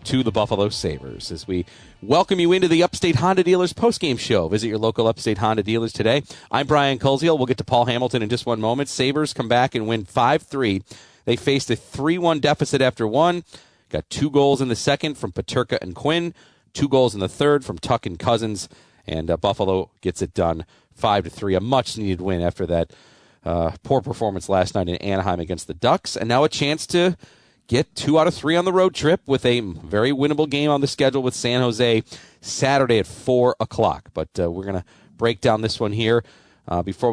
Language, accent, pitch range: English, American, 100-140 Hz